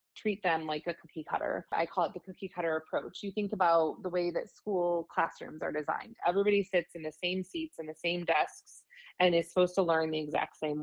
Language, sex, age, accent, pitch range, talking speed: English, female, 20-39, American, 170-195 Hz, 225 wpm